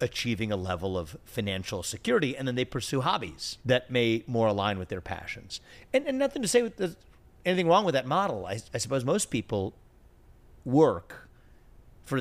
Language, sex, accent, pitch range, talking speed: English, male, American, 100-130 Hz, 175 wpm